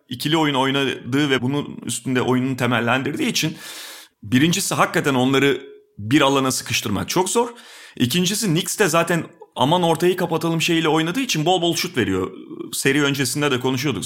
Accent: native